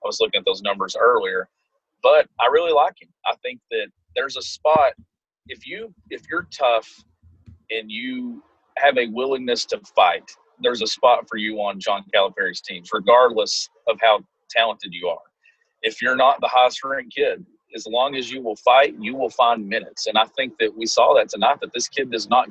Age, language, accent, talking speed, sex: 40-59, English, American, 205 wpm, male